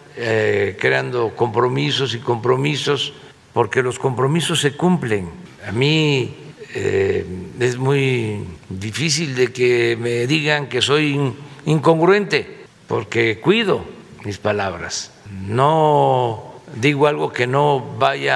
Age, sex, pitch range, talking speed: 60-79, male, 110-150 Hz, 110 wpm